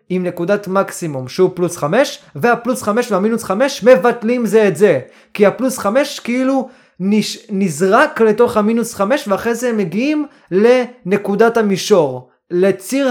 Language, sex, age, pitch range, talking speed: Hebrew, male, 20-39, 185-240 Hz, 135 wpm